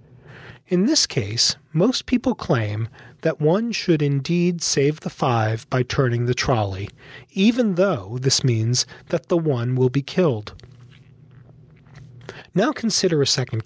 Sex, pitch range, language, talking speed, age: male, 125-155 Hz, English, 135 wpm, 40-59